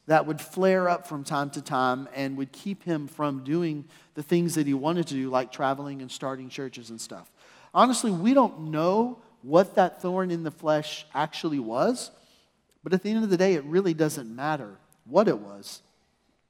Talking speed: 195 wpm